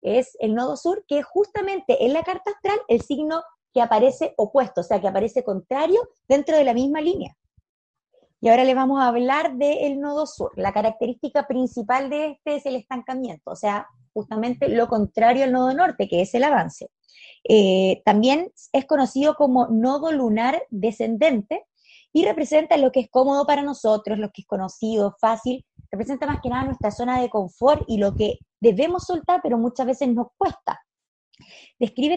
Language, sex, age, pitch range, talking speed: Spanish, female, 20-39, 225-295 Hz, 180 wpm